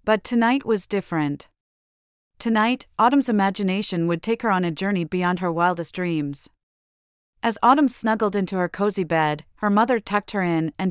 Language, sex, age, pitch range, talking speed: English, female, 30-49, 165-215 Hz, 165 wpm